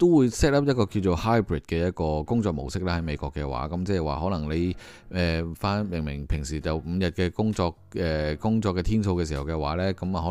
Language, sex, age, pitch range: Chinese, male, 20-39, 80-100 Hz